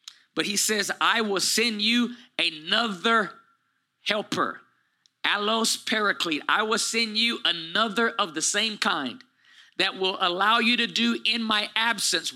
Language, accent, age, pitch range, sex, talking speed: English, American, 40-59, 200-245 Hz, male, 140 wpm